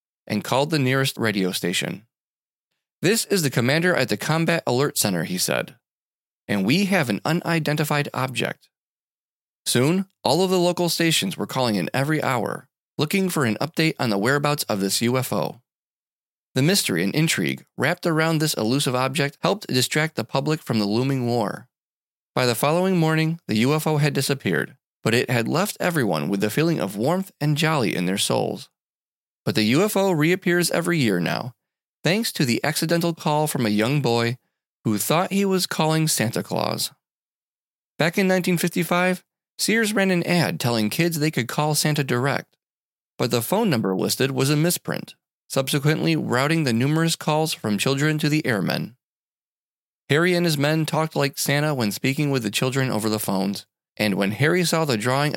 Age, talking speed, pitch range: 30-49, 175 wpm, 120-165 Hz